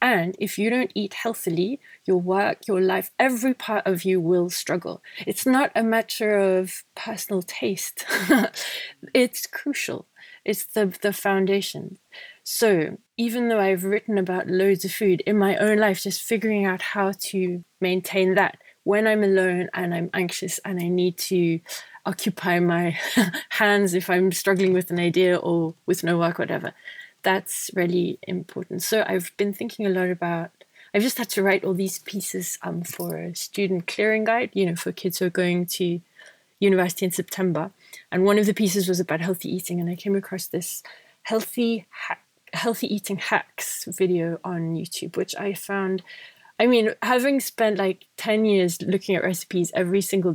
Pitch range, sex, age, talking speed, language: 180-215 Hz, female, 30-49, 175 wpm, English